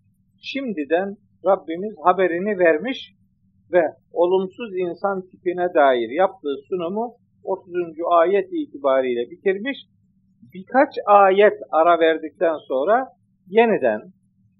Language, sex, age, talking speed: Turkish, male, 50-69, 85 wpm